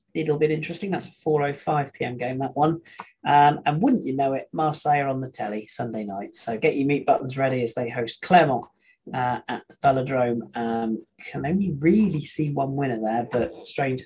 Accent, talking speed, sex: British, 195 wpm, male